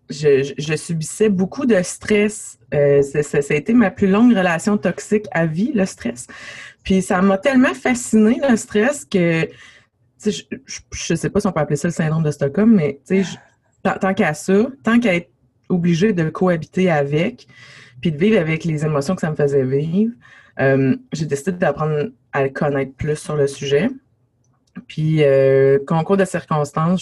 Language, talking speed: French, 185 wpm